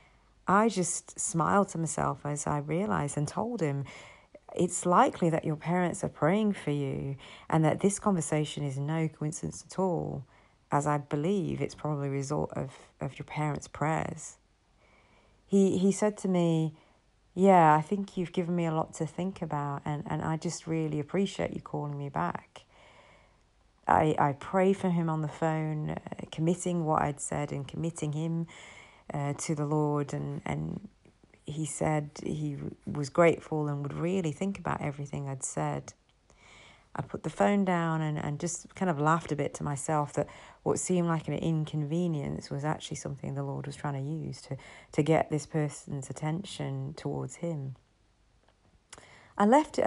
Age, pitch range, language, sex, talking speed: 40-59, 145-180 Hz, English, female, 170 wpm